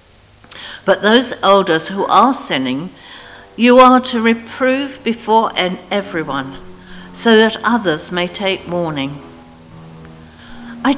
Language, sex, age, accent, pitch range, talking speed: English, female, 60-79, British, 155-245 Hz, 105 wpm